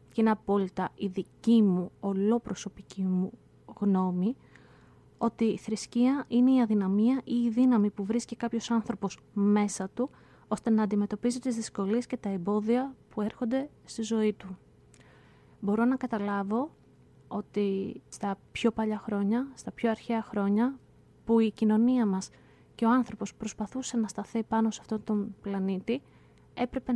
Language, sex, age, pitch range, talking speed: Greek, female, 20-39, 205-240 Hz, 145 wpm